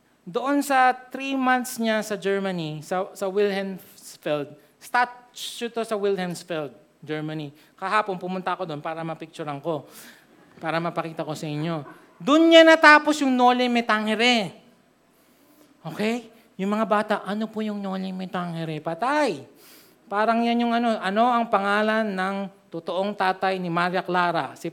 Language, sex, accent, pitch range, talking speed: Filipino, male, native, 180-245 Hz, 135 wpm